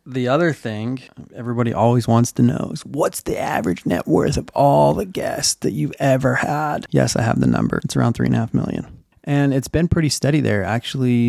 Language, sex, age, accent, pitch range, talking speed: English, male, 20-39, American, 115-135 Hz, 220 wpm